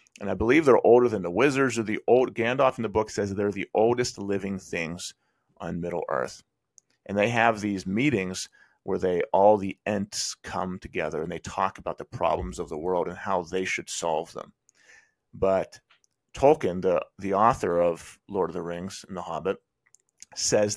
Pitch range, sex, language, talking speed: 95-110 Hz, male, English, 190 wpm